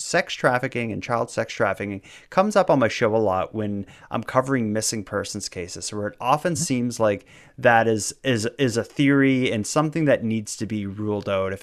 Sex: male